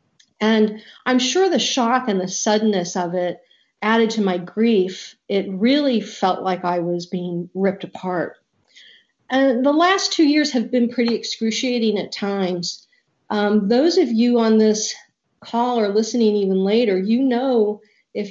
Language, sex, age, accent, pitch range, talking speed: English, female, 50-69, American, 190-245 Hz, 155 wpm